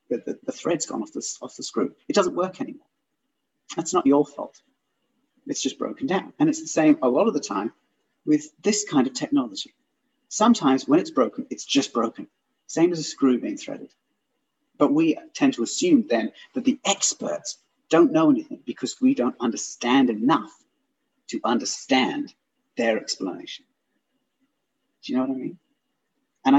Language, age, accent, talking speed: English, 40-59, British, 170 wpm